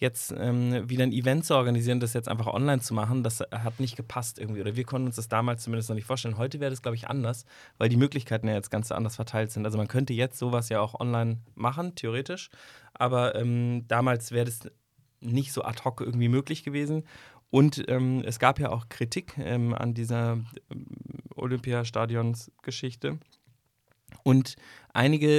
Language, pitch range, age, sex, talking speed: German, 115-135 Hz, 20-39, male, 185 wpm